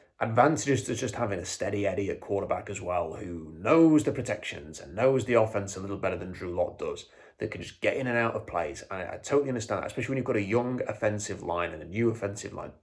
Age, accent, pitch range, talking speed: 30-49, British, 100-125 Hz, 255 wpm